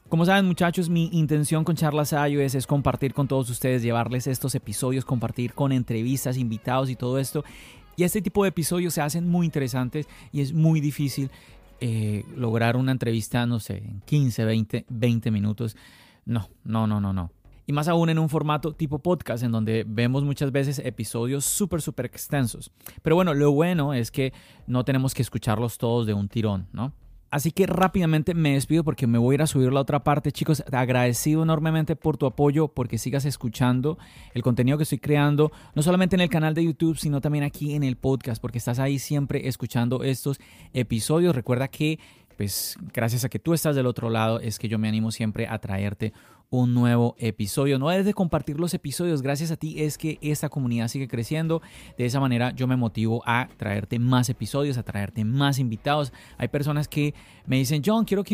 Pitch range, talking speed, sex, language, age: 120-155 Hz, 195 wpm, male, Spanish, 30-49